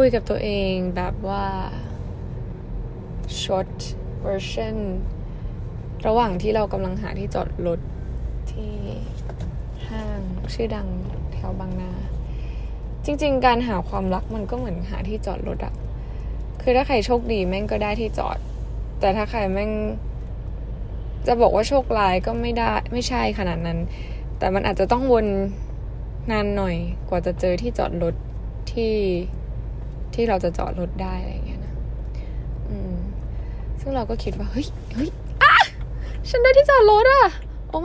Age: 10-29